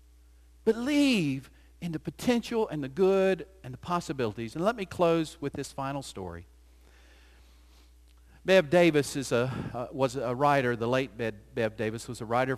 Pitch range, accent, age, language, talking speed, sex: 100-150 Hz, American, 50-69, English, 155 wpm, male